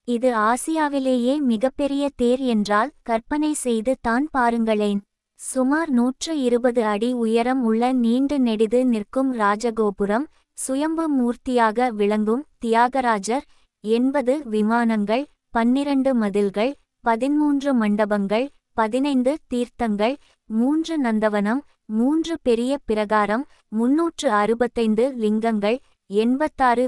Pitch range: 225-270 Hz